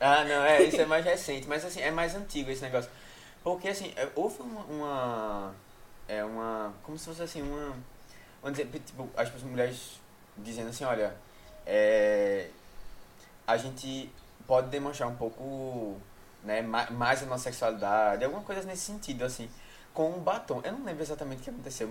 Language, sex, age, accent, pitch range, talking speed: Portuguese, male, 20-39, Brazilian, 115-155 Hz, 165 wpm